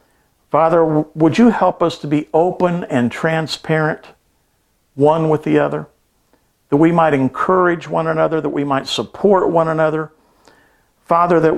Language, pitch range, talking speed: English, 130-160 Hz, 145 wpm